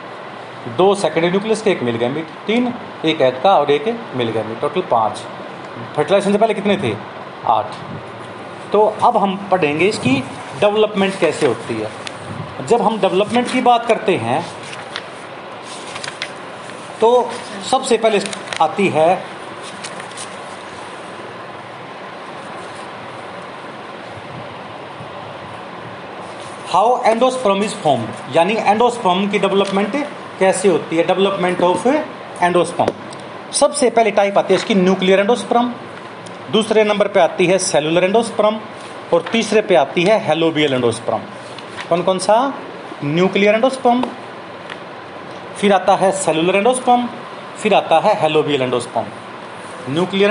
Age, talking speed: 40-59, 110 wpm